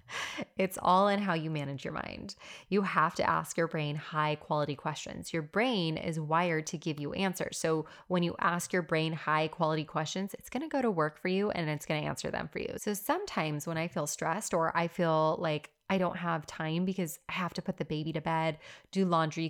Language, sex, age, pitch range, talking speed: English, female, 20-39, 155-190 Hz, 230 wpm